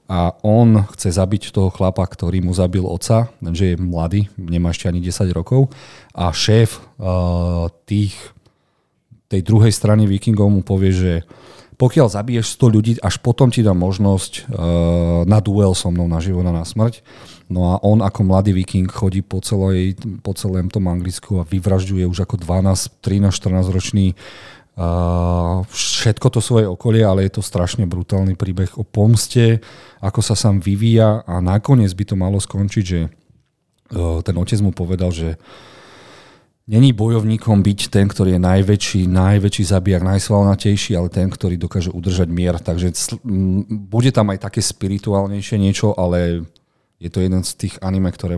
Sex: male